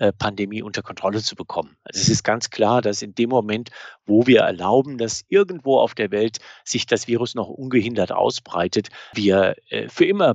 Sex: male